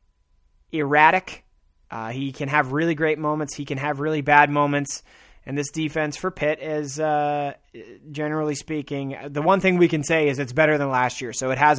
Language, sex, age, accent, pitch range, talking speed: English, male, 20-39, American, 125-155 Hz, 195 wpm